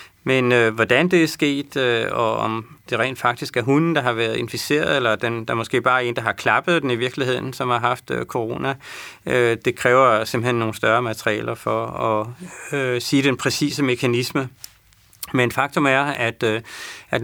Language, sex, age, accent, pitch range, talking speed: Danish, male, 30-49, native, 115-135 Hz, 170 wpm